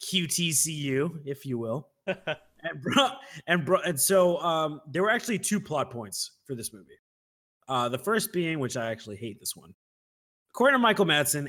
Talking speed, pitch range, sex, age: 180 wpm, 125-175 Hz, male, 30-49